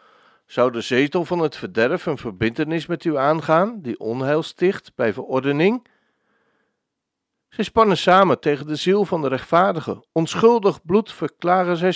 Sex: male